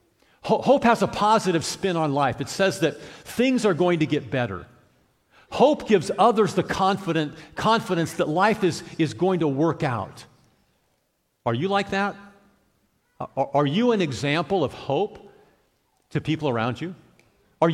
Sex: male